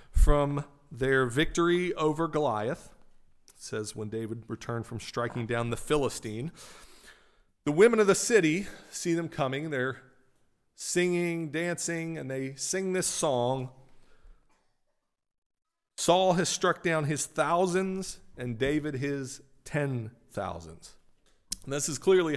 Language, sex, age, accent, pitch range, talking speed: English, male, 40-59, American, 115-160 Hz, 125 wpm